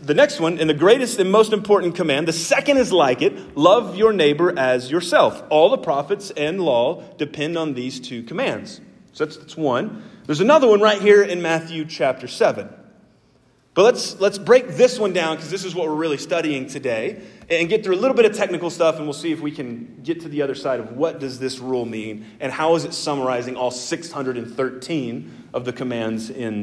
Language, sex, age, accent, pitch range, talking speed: English, male, 30-49, American, 150-215 Hz, 215 wpm